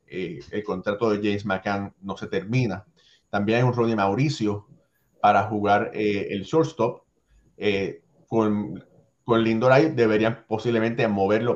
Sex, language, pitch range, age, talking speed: male, Spanish, 110-140 Hz, 30-49, 140 wpm